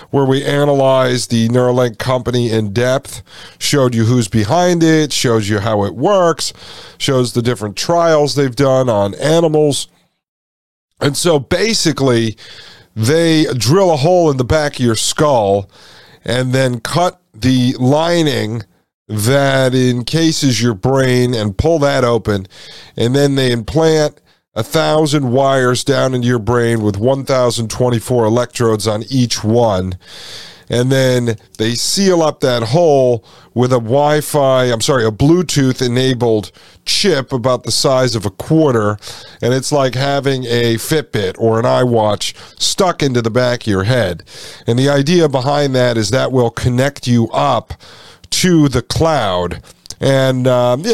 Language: English